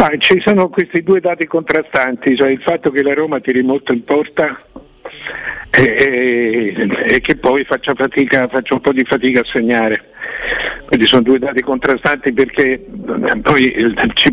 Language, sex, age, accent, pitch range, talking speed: Italian, male, 60-79, native, 120-145 Hz, 140 wpm